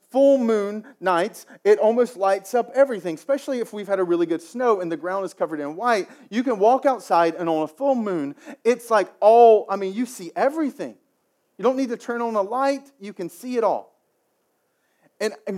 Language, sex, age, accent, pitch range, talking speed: English, male, 40-59, American, 180-250 Hz, 210 wpm